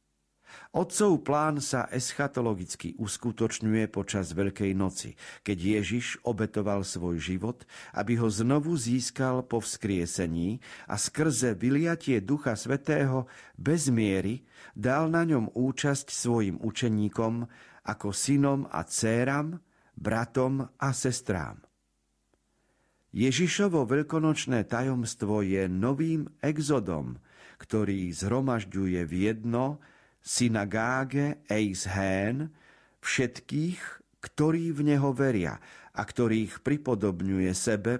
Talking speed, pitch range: 95 wpm, 100-140 Hz